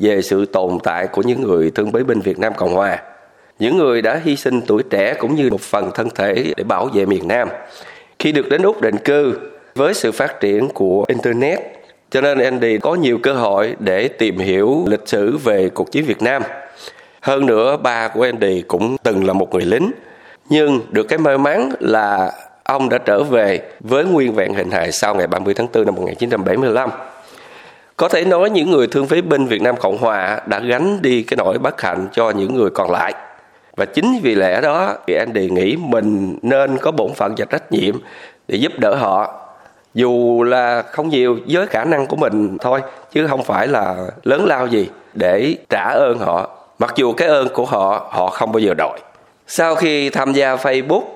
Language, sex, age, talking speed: Vietnamese, male, 20-39, 205 wpm